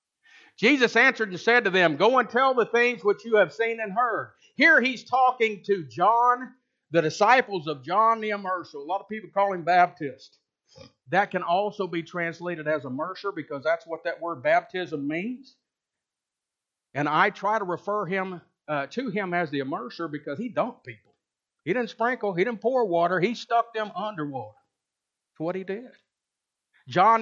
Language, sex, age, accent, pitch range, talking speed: English, male, 50-69, American, 185-255 Hz, 180 wpm